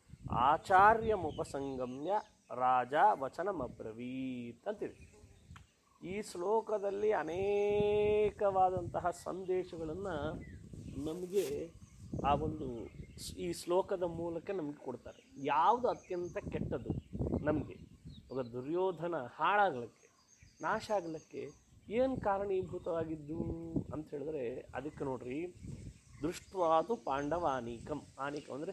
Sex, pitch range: male, 130-195 Hz